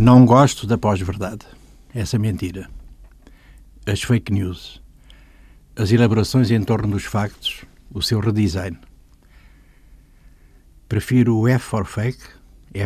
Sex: male